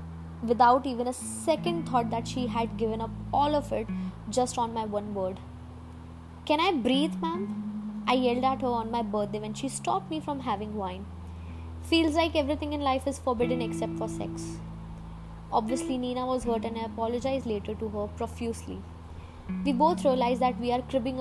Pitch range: 180-250 Hz